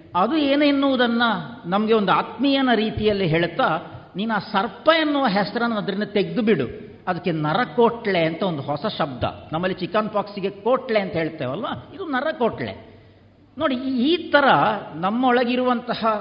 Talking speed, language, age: 120 wpm, Kannada, 50-69